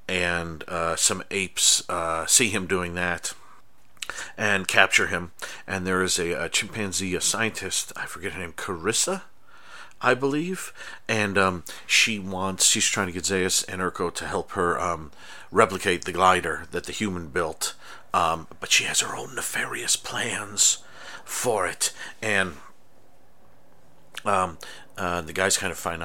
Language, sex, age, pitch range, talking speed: English, male, 40-59, 85-95 Hz, 155 wpm